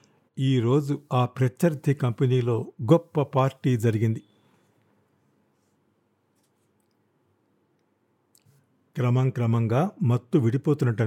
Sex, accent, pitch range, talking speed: male, native, 120-150 Hz, 60 wpm